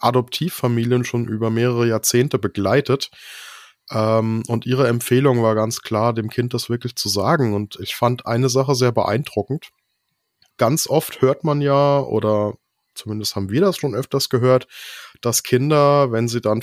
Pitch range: 105-130 Hz